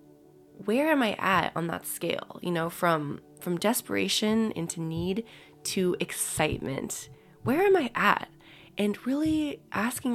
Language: English